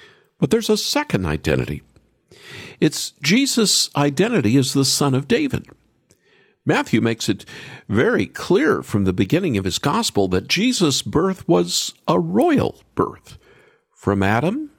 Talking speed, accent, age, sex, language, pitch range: 135 wpm, American, 50-69, male, English, 110-175 Hz